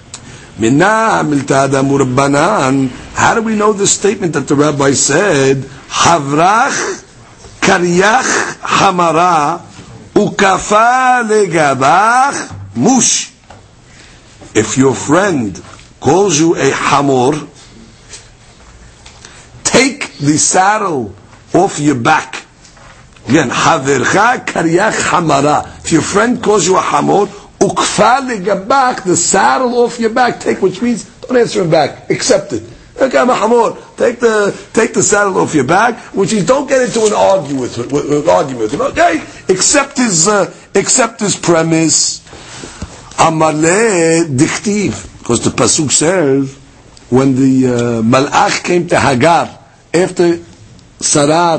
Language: English